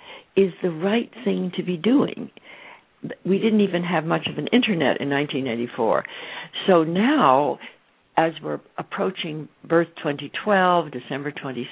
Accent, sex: American, female